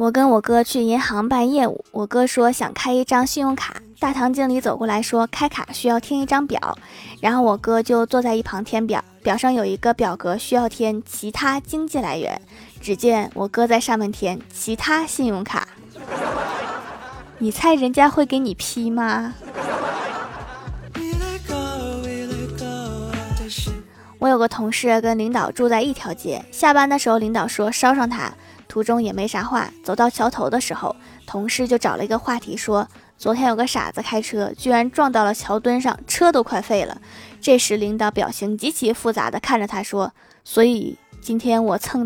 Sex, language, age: female, Chinese, 20-39